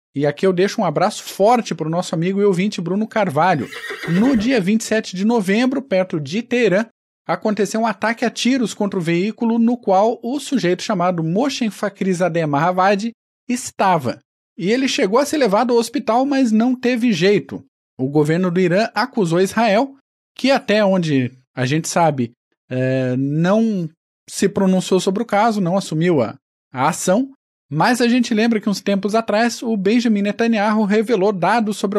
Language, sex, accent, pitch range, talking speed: Portuguese, male, Brazilian, 175-230 Hz, 165 wpm